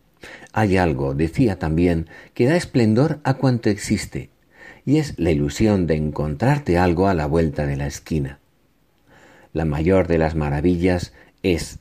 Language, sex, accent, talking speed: Spanish, male, Spanish, 145 wpm